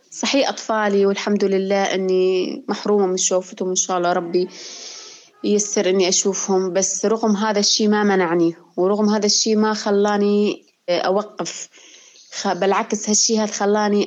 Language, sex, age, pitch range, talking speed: Arabic, female, 20-39, 190-220 Hz, 130 wpm